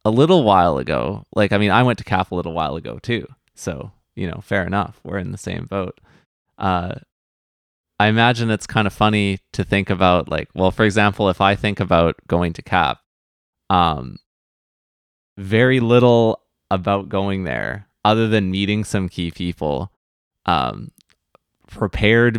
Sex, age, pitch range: male, 20-39, 90-105 Hz